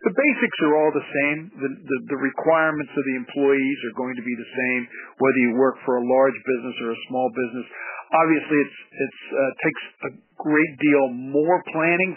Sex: male